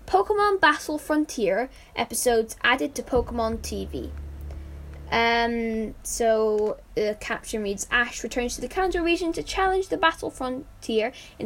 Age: 10-29